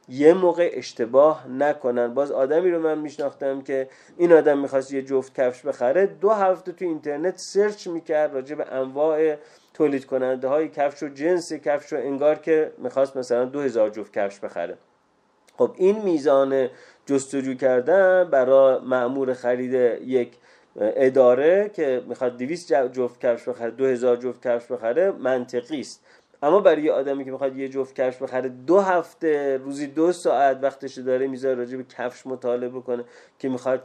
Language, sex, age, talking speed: Persian, male, 30-49, 160 wpm